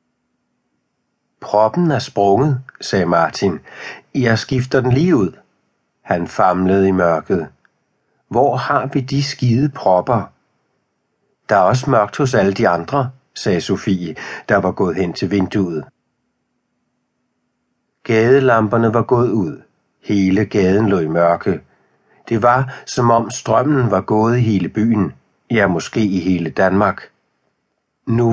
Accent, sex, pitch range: native, male, 95-130 Hz